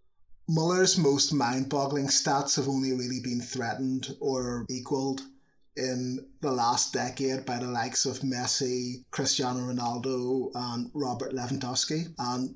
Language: English